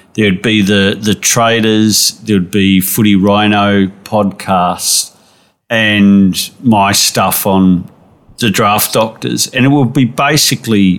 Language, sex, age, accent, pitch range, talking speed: English, male, 50-69, Australian, 95-115 Hz, 130 wpm